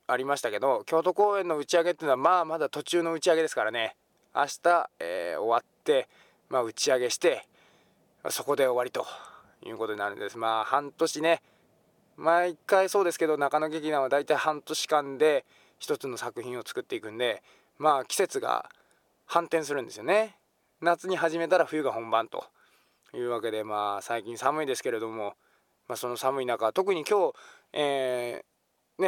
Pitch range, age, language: 125-180 Hz, 20-39, Japanese